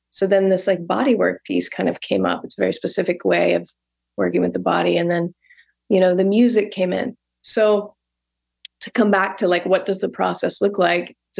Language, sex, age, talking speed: English, female, 30-49, 220 wpm